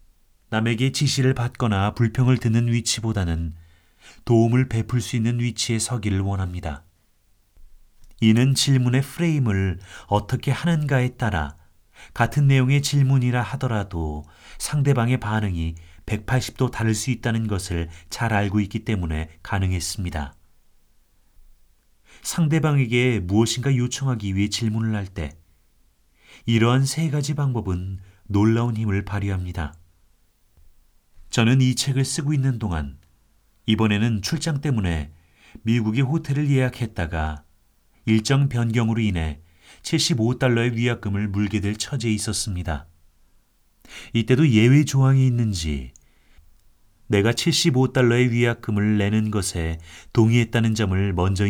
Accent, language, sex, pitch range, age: native, Korean, male, 90-125 Hz, 40-59